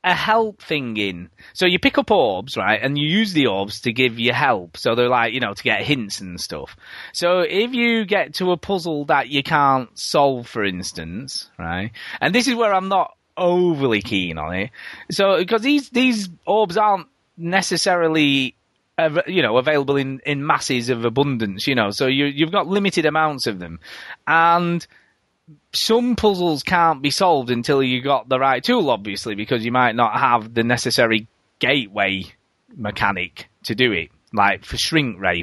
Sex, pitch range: male, 115-180 Hz